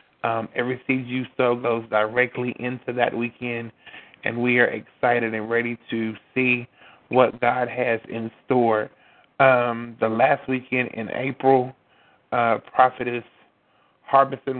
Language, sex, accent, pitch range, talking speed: English, male, American, 115-125 Hz, 130 wpm